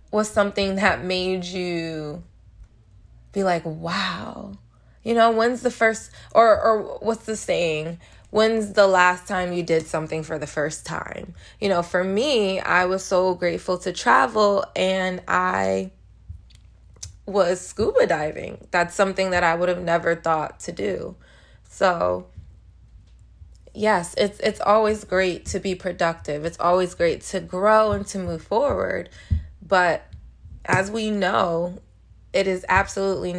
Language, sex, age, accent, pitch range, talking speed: English, female, 20-39, American, 150-200 Hz, 140 wpm